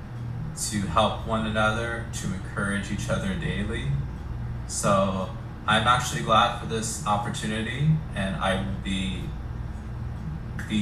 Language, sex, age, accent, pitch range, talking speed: English, male, 20-39, American, 100-120 Hz, 115 wpm